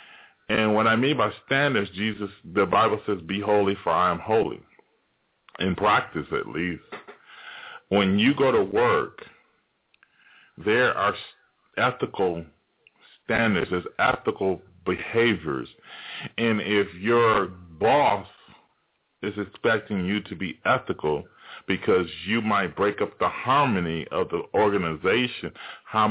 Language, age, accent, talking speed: English, 30-49, American, 120 wpm